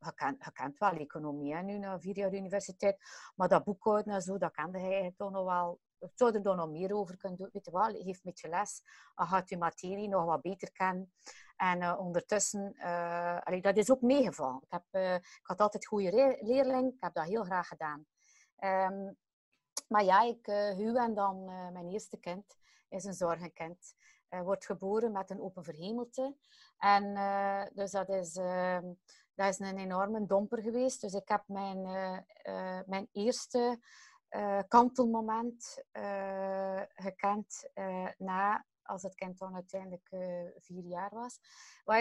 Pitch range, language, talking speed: 185-220 Hz, English, 180 wpm